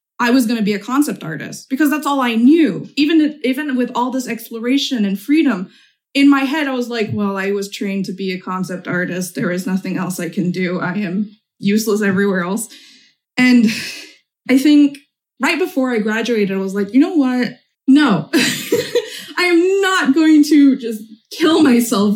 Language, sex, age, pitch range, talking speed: English, female, 20-39, 205-285 Hz, 185 wpm